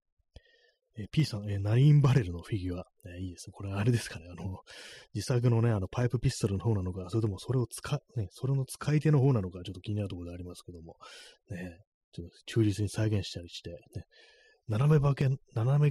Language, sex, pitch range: Japanese, male, 90-120 Hz